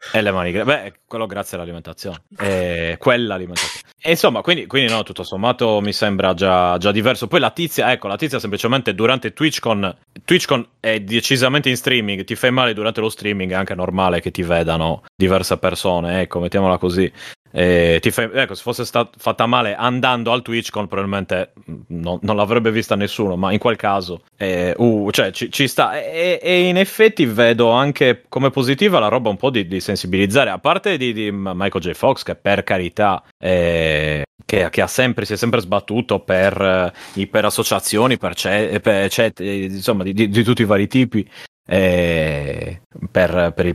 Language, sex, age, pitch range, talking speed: Italian, male, 30-49, 90-115 Hz, 190 wpm